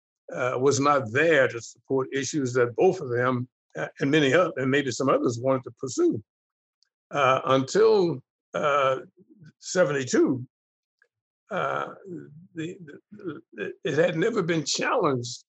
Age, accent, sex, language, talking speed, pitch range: 60-79, American, male, English, 130 wpm, 135-170 Hz